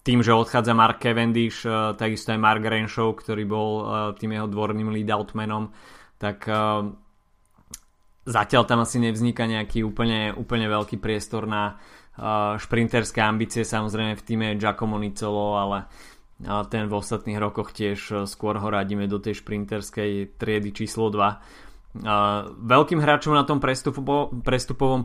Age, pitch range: 20-39, 105-125 Hz